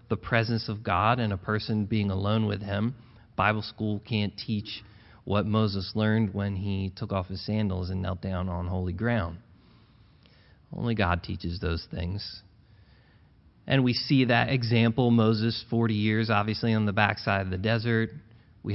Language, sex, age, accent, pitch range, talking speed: English, male, 30-49, American, 100-115 Hz, 165 wpm